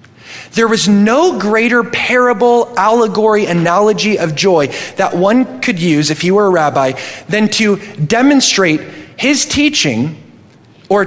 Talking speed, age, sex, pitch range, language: 130 wpm, 30-49, male, 140-225 Hz, English